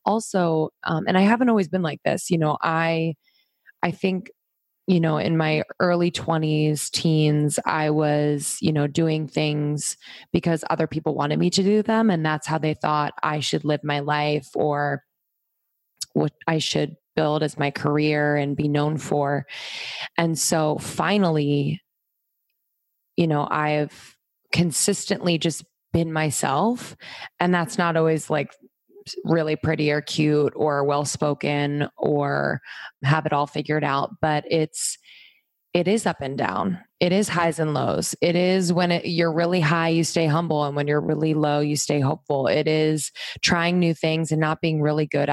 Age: 20-39